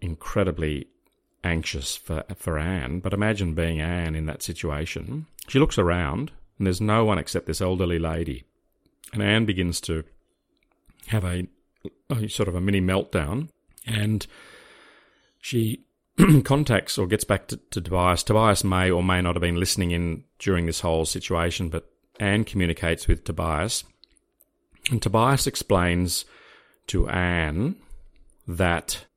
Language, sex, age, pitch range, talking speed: English, male, 30-49, 80-100 Hz, 140 wpm